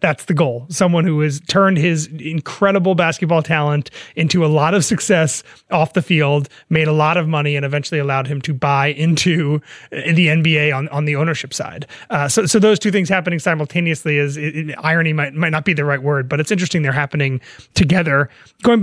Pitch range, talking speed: 155-185 Hz, 205 wpm